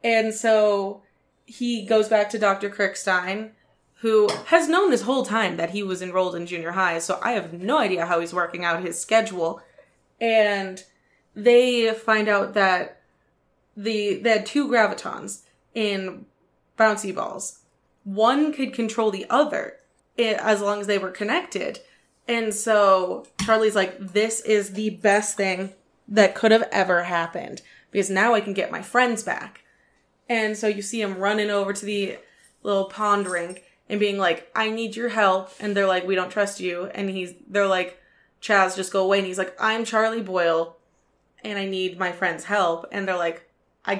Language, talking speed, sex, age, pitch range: English, 175 wpm, female, 20-39, 185-220 Hz